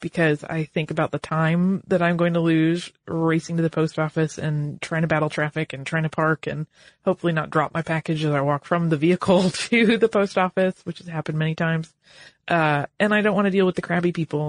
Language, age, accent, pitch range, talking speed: English, 30-49, American, 155-200 Hz, 235 wpm